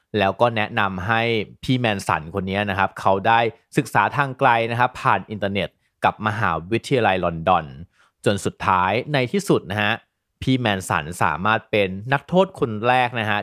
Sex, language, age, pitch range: male, Thai, 30-49, 100-135 Hz